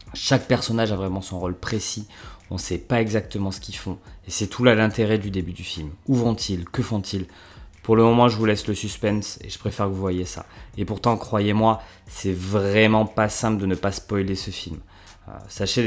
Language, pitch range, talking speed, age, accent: French, 95-115 Hz, 225 wpm, 20-39, French